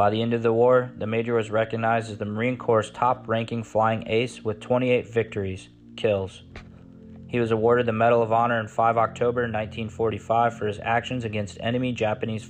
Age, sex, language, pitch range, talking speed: 20-39, male, English, 105-120 Hz, 180 wpm